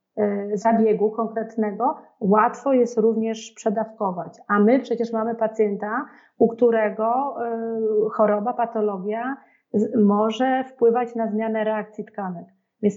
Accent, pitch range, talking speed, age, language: native, 215-240 Hz, 100 wpm, 40-59, Polish